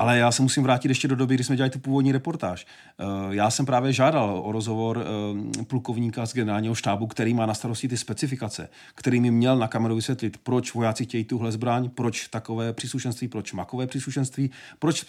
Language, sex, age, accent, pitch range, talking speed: Czech, male, 40-59, native, 105-130 Hz, 190 wpm